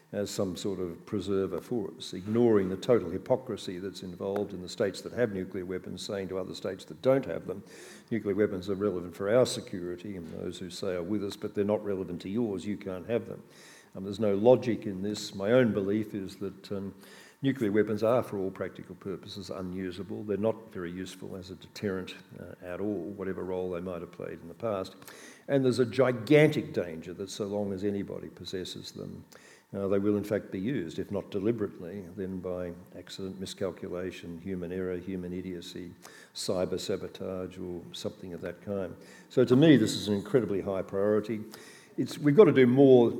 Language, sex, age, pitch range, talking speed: English, male, 50-69, 95-110 Hz, 195 wpm